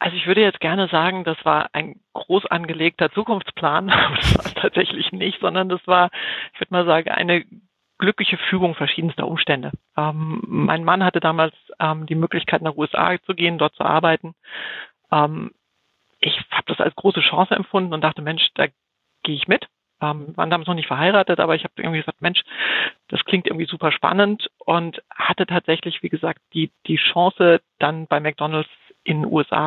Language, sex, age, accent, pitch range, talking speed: German, female, 40-59, German, 155-180 Hz, 180 wpm